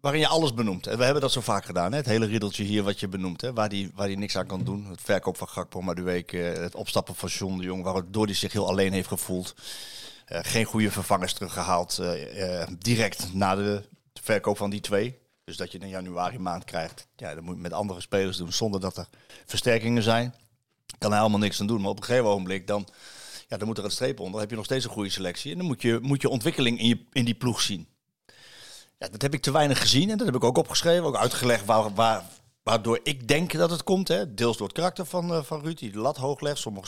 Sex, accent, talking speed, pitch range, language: male, Dutch, 260 wpm, 100-145 Hz, Dutch